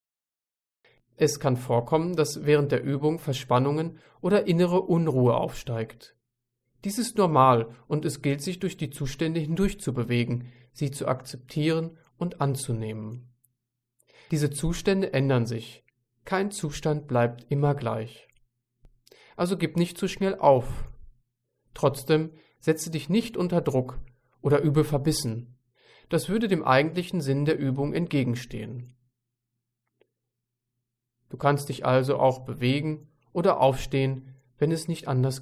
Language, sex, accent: German, male, German